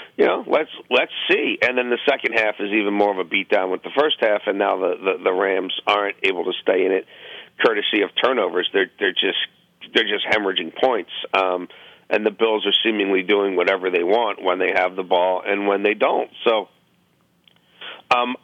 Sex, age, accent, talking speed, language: male, 50-69, American, 210 wpm, English